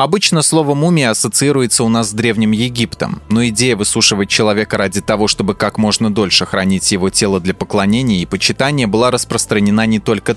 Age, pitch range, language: 20-39, 105-130 Hz, Russian